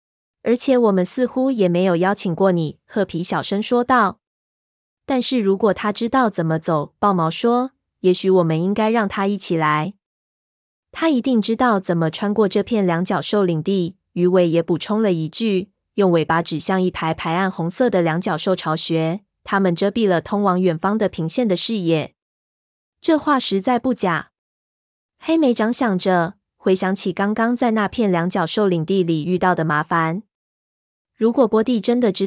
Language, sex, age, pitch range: Chinese, female, 20-39, 175-220 Hz